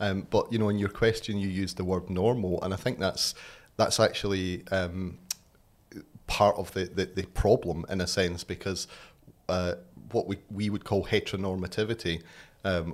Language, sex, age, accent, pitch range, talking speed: Danish, male, 30-49, British, 90-105 Hz, 170 wpm